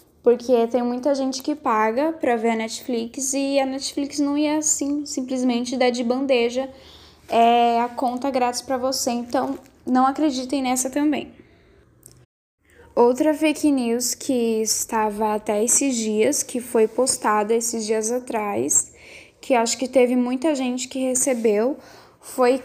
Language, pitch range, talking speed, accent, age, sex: Portuguese, 235-275 Hz, 140 wpm, Brazilian, 10-29, female